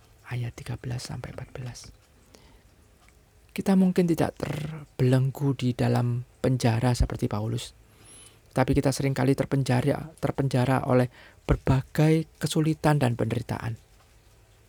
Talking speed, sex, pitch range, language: 85 wpm, male, 110-145 Hz, Indonesian